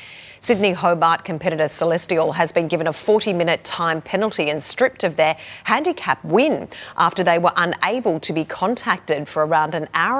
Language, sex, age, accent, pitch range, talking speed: English, female, 30-49, Australian, 155-215 Hz, 170 wpm